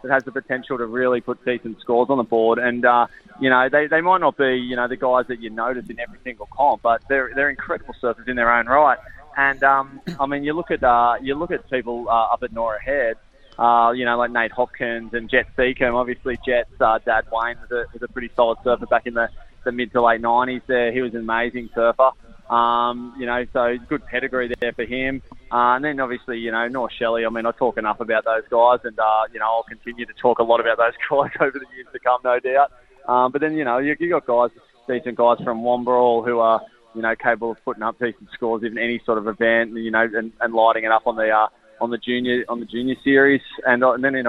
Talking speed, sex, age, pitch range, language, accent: 255 wpm, male, 20-39, 115-125 Hz, English, Australian